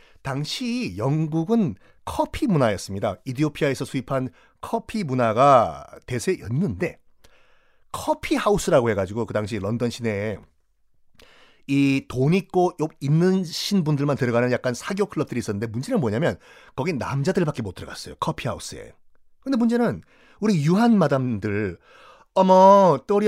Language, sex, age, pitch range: Korean, male, 30-49, 135-210 Hz